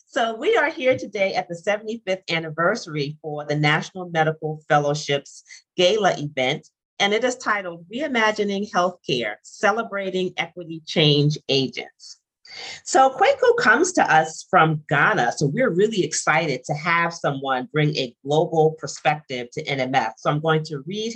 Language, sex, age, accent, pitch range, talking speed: English, female, 40-59, American, 145-200 Hz, 145 wpm